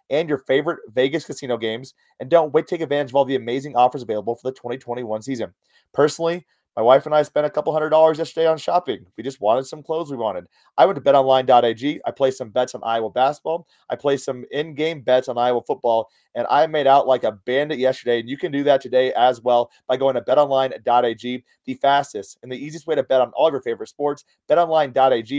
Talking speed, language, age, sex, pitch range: 225 wpm, English, 30-49, male, 125-155 Hz